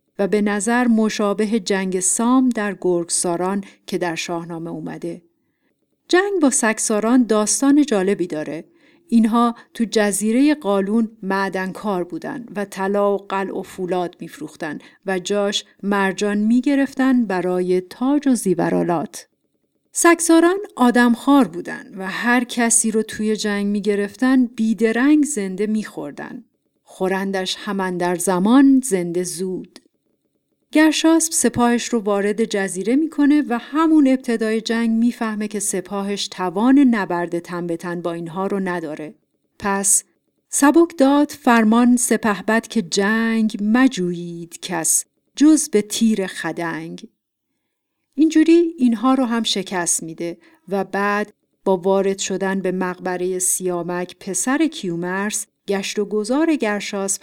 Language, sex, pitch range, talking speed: Persian, female, 185-240 Hz, 120 wpm